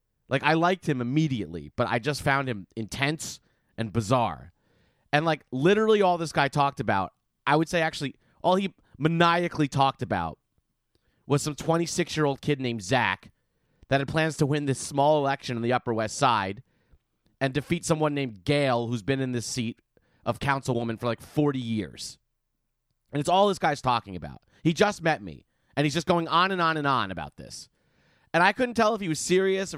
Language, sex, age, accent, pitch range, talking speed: English, male, 30-49, American, 125-170 Hz, 200 wpm